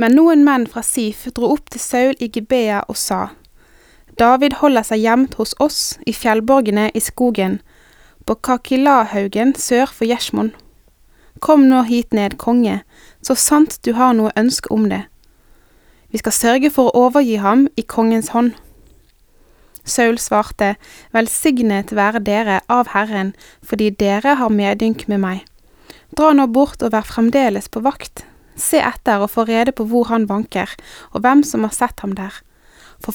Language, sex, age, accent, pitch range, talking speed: Danish, female, 20-39, Swedish, 220-265 Hz, 160 wpm